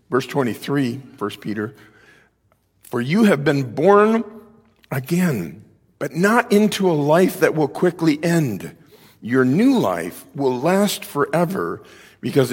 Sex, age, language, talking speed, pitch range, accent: male, 50-69, English, 125 wpm, 115-155 Hz, American